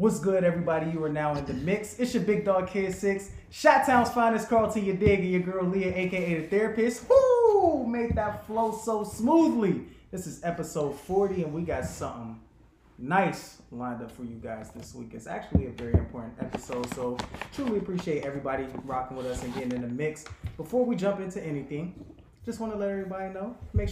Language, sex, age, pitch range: English, male, 20-39, 130-190 Hz